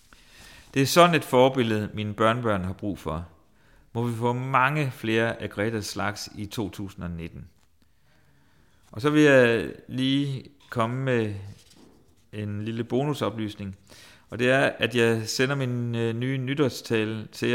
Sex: male